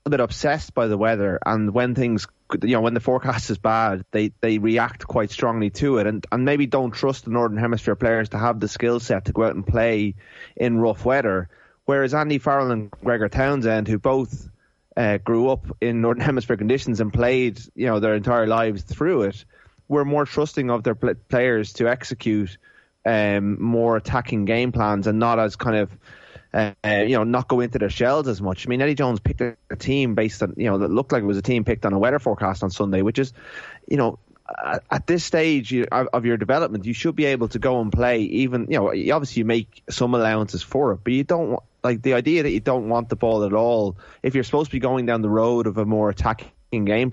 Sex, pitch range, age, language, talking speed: male, 105-130 Hz, 20-39, English, 230 wpm